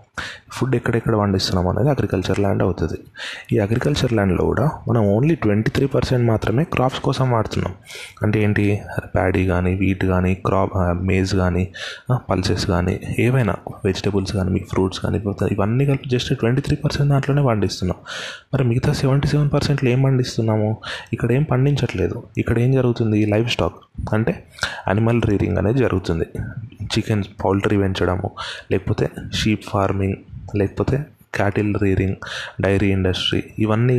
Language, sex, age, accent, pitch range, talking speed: Telugu, male, 20-39, native, 95-125 Hz, 135 wpm